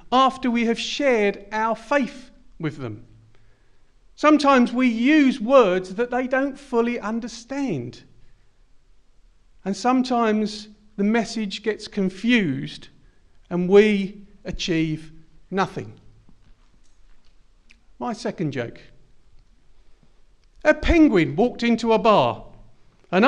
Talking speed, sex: 95 wpm, male